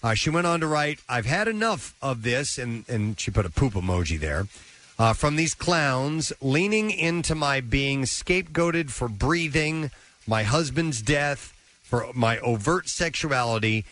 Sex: male